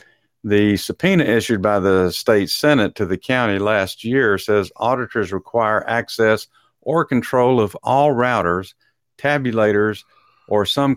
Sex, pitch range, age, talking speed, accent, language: male, 95-120 Hz, 50-69, 130 wpm, American, English